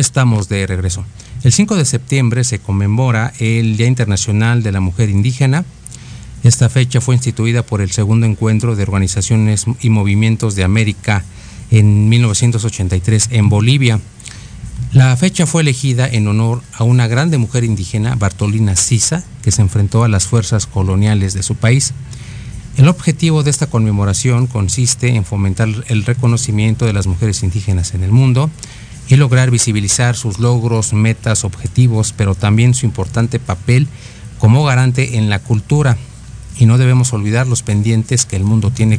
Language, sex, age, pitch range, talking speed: Spanish, male, 40-59, 105-125 Hz, 155 wpm